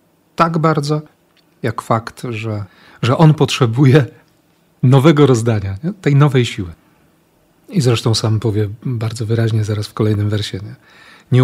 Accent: native